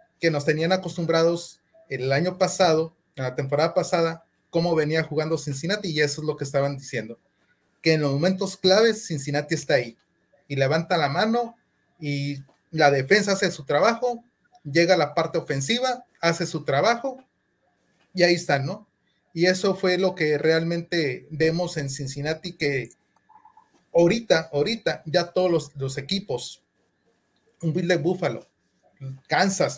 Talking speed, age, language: 150 wpm, 30-49, Spanish